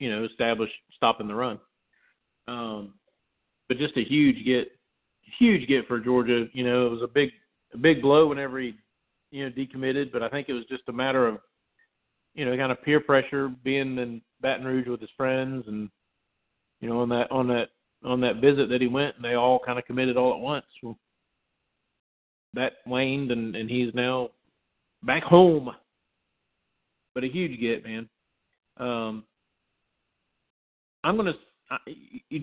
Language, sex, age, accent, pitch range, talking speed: English, male, 40-59, American, 120-145 Hz, 170 wpm